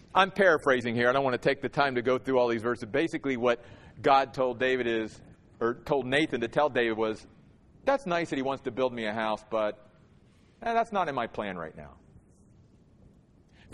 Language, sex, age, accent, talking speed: English, male, 40-59, American, 215 wpm